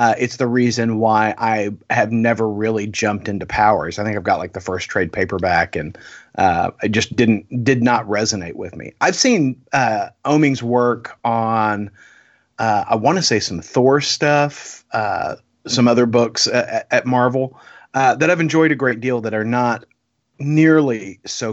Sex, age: male, 30-49